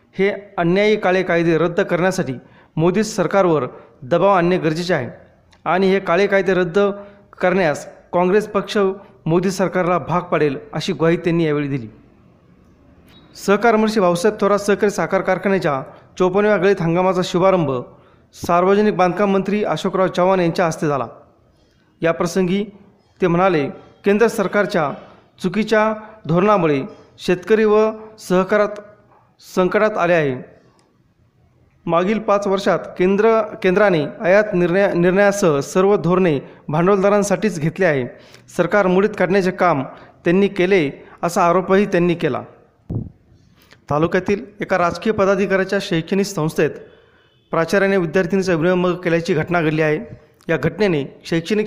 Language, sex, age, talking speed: Marathi, male, 40-59, 115 wpm